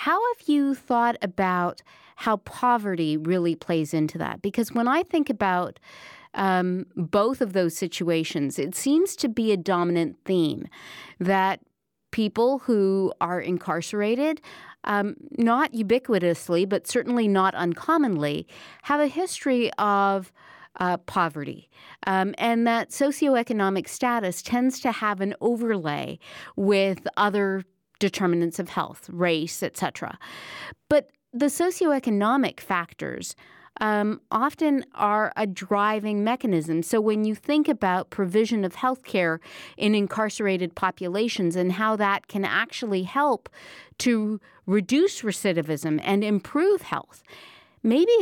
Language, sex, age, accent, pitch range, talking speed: English, female, 40-59, American, 185-245 Hz, 125 wpm